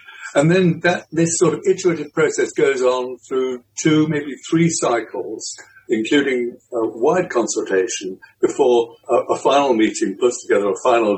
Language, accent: English, British